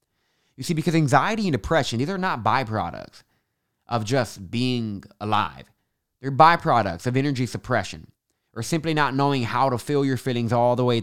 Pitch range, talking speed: 105-135 Hz, 170 wpm